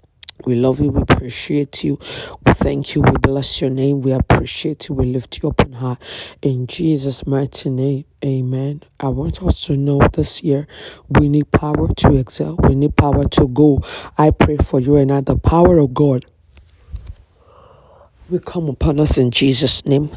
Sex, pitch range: female, 130-140 Hz